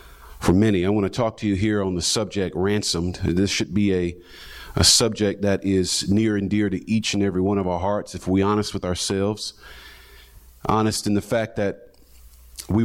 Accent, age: American, 40-59